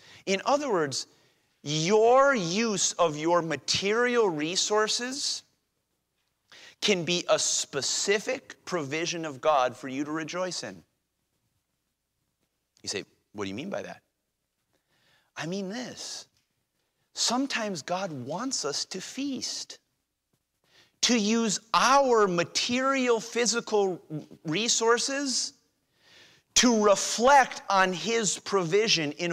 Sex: male